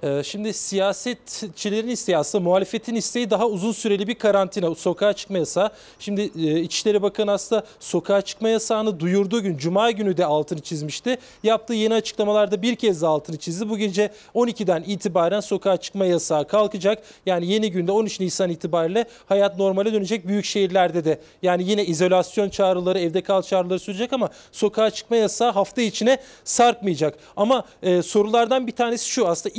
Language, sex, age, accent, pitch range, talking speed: Turkish, male, 40-59, native, 190-230 Hz, 155 wpm